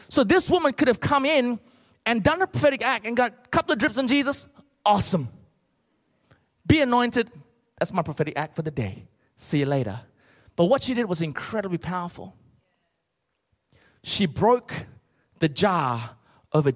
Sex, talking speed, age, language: male, 160 wpm, 30-49, English